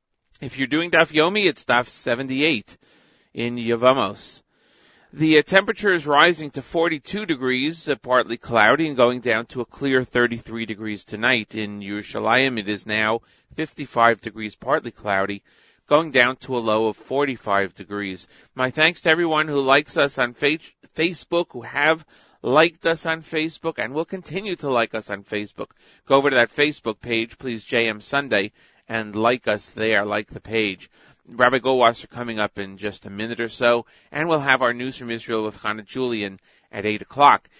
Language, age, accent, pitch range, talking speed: English, 40-59, American, 110-145 Hz, 170 wpm